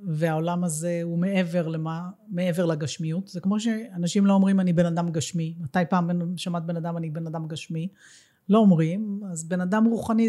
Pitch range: 170-210 Hz